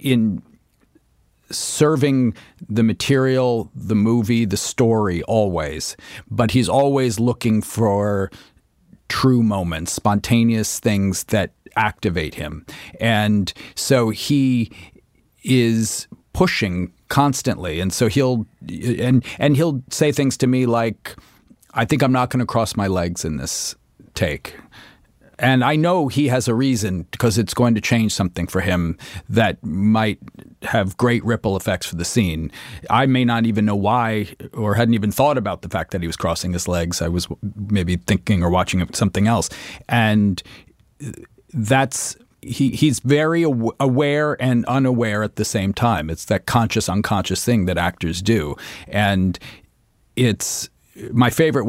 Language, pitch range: English, 100-125 Hz